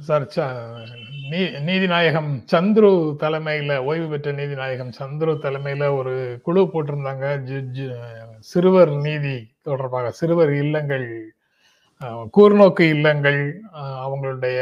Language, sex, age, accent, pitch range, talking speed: Tamil, male, 30-49, native, 130-155 Hz, 85 wpm